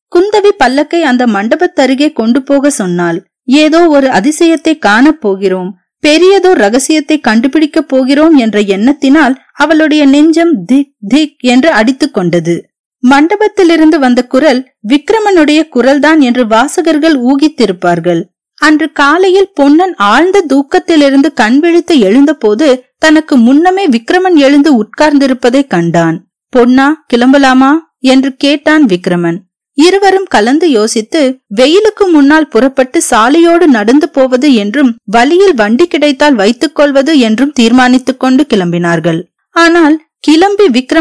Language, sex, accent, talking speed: Tamil, female, native, 105 wpm